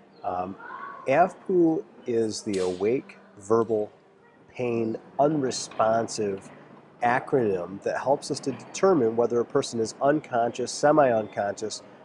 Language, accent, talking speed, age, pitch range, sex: English, American, 100 wpm, 30-49, 110-140 Hz, male